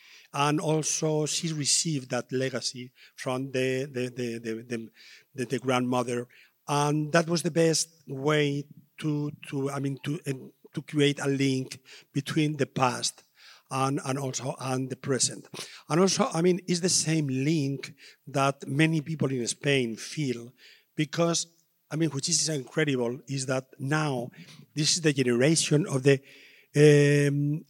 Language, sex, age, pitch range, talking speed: English, male, 50-69, 130-155 Hz, 150 wpm